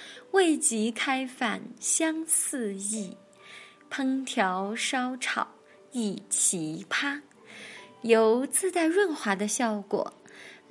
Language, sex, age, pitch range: Chinese, female, 20-39, 210-270 Hz